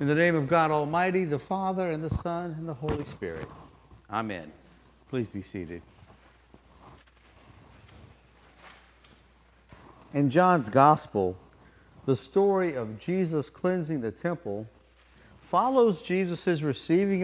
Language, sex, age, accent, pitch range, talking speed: English, male, 50-69, American, 105-165 Hz, 110 wpm